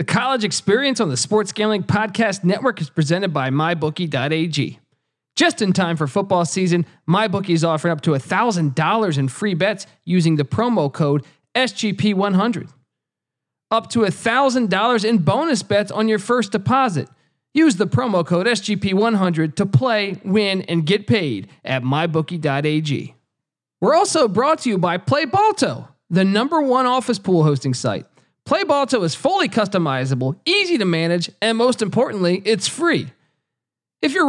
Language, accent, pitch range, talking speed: English, American, 165-235 Hz, 145 wpm